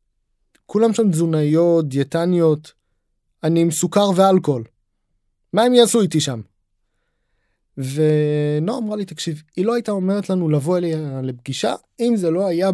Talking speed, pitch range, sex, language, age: 140 wpm, 140-180 Hz, male, Hebrew, 20-39